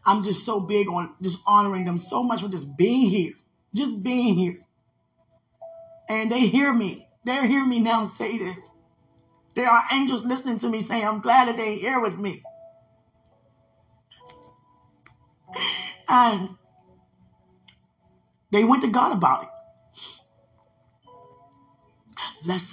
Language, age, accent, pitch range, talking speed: English, 20-39, American, 140-210 Hz, 130 wpm